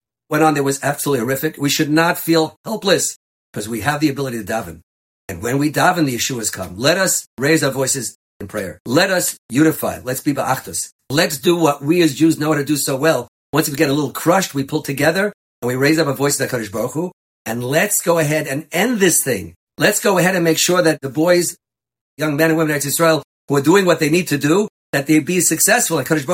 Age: 50-69